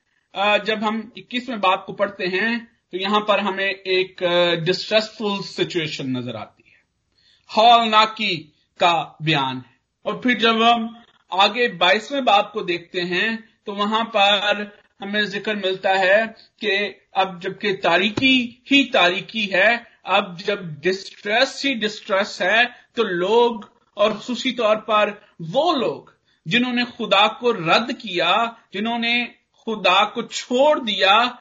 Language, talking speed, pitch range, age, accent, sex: Hindi, 135 wpm, 185-240 Hz, 50-69, native, male